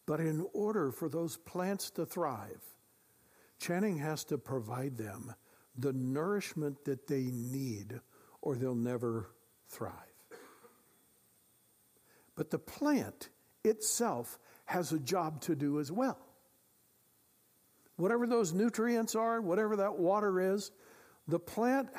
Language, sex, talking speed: English, male, 115 wpm